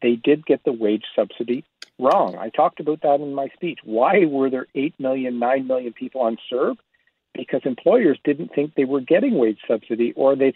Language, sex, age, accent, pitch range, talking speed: English, male, 50-69, American, 120-165 Hz, 200 wpm